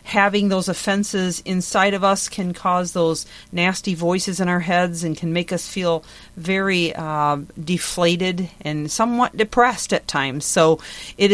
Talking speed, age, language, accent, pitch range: 155 wpm, 40-59, English, American, 175-205 Hz